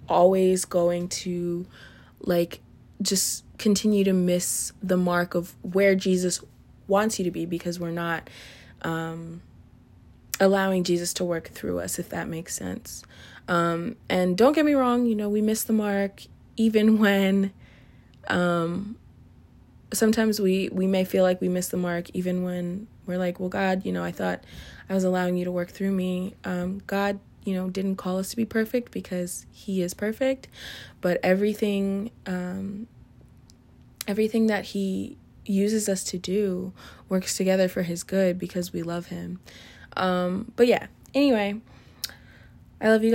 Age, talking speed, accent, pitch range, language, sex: 20-39, 160 wpm, American, 180-210 Hz, English, female